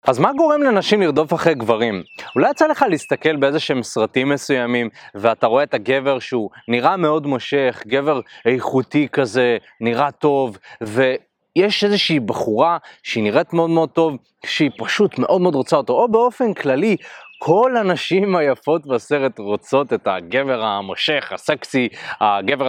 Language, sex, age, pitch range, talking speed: Hebrew, male, 20-39, 120-165 Hz, 145 wpm